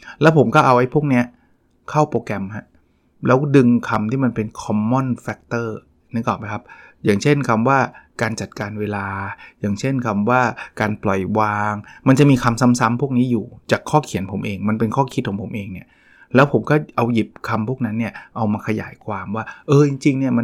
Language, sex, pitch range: Thai, male, 105-130 Hz